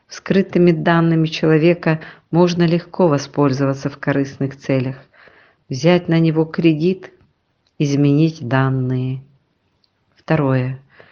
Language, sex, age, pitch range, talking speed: Russian, female, 40-59, 140-175 Hz, 85 wpm